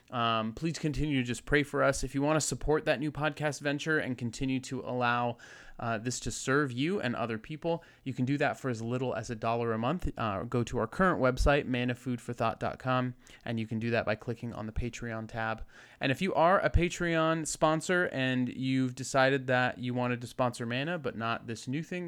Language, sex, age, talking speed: English, male, 20-39, 215 wpm